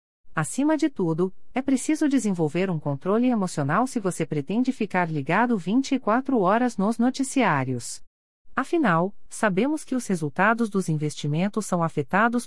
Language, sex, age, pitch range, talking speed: Portuguese, female, 40-59, 170-250 Hz, 130 wpm